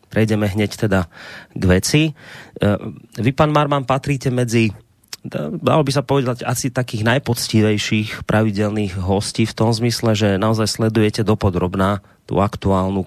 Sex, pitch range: male, 105-130 Hz